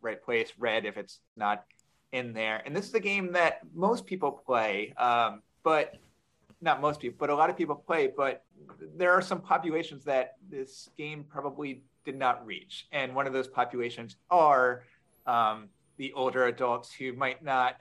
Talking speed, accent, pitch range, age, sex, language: 180 wpm, American, 115-150 Hz, 30-49, male, English